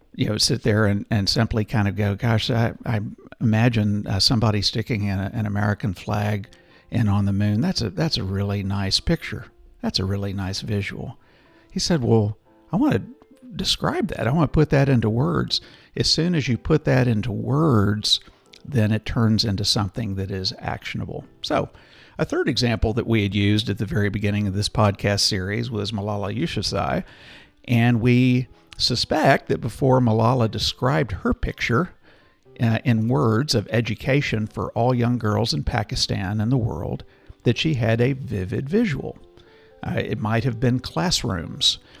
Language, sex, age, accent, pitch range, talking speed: English, male, 50-69, American, 105-125 Hz, 175 wpm